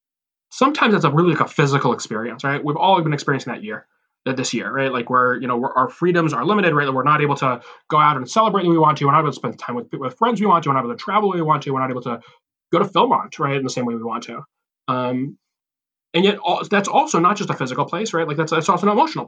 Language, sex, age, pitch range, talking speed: English, male, 20-39, 130-175 Hz, 295 wpm